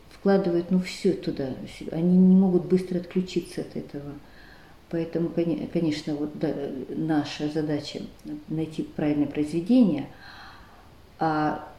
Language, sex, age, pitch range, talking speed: Russian, female, 40-59, 155-185 Hz, 100 wpm